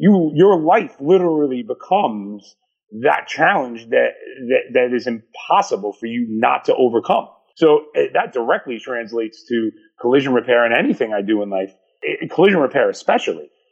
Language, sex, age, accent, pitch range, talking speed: English, male, 30-49, American, 115-160 Hz, 145 wpm